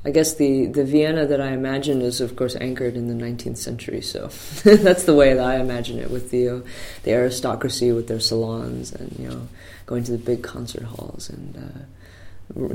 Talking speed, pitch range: 205 wpm, 115-130 Hz